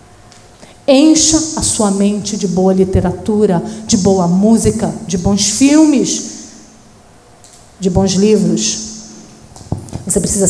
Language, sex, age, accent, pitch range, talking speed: Portuguese, female, 40-59, Brazilian, 170-205 Hz, 105 wpm